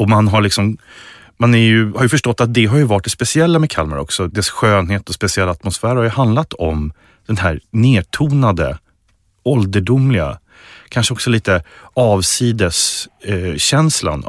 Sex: male